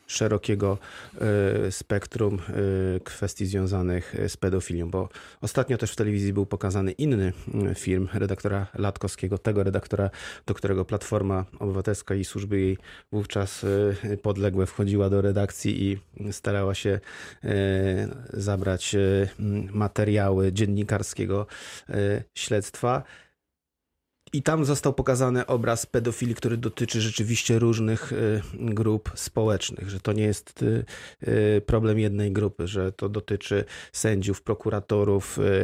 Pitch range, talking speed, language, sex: 100-110 Hz, 105 wpm, Polish, male